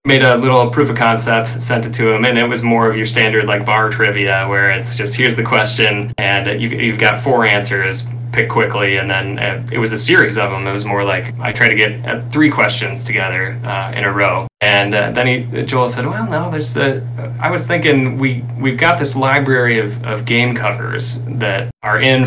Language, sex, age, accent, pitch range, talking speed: English, male, 20-39, American, 110-125 Hz, 230 wpm